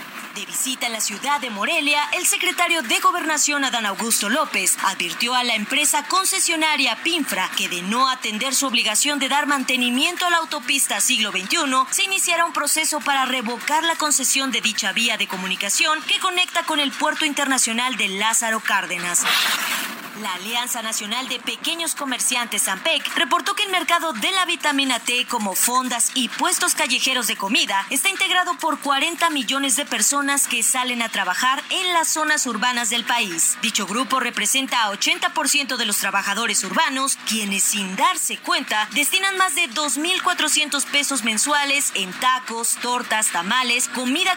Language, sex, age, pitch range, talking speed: Spanish, female, 30-49, 235-310 Hz, 160 wpm